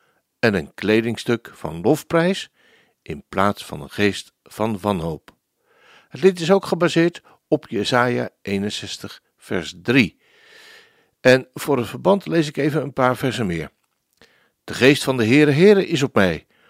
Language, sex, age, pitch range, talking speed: Dutch, male, 60-79, 105-165 Hz, 150 wpm